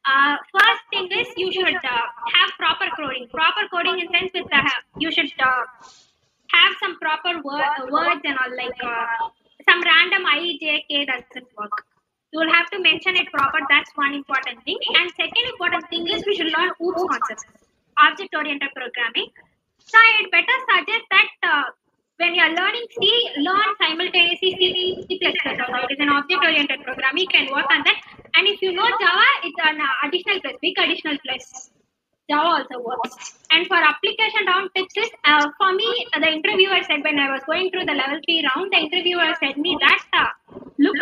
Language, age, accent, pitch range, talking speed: Tamil, 20-39, native, 285-375 Hz, 185 wpm